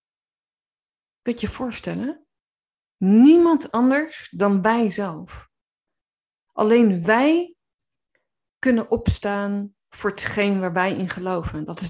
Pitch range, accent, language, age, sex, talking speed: 180-240 Hz, Dutch, Dutch, 20-39, female, 105 wpm